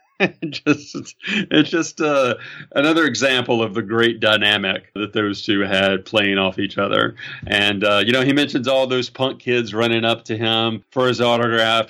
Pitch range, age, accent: 115-190 Hz, 40-59, American